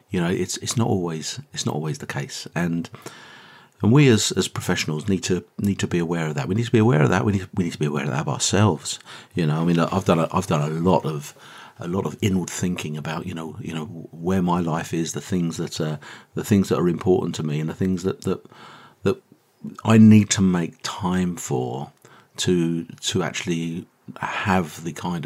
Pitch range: 80-95 Hz